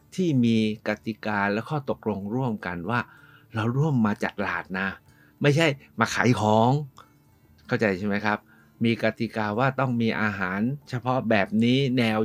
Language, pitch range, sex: Thai, 105-135 Hz, male